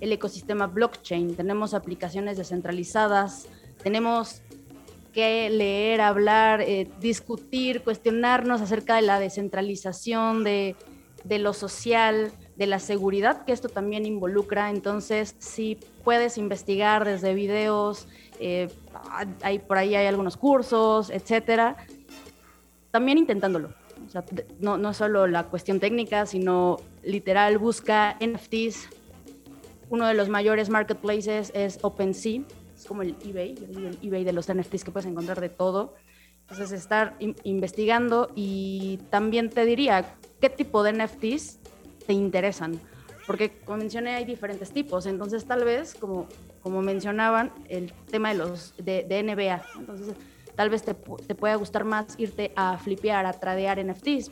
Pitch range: 195-225 Hz